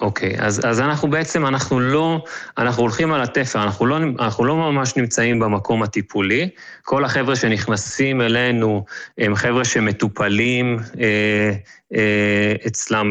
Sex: male